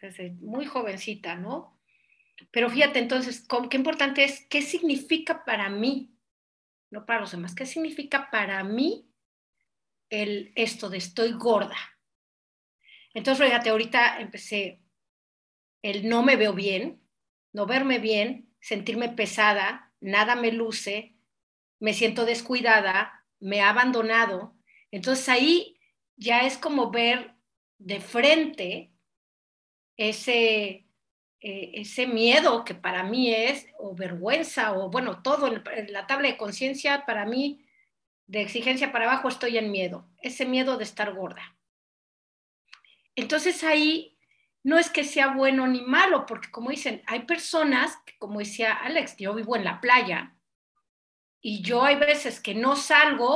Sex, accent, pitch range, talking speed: female, Mexican, 210-275 Hz, 135 wpm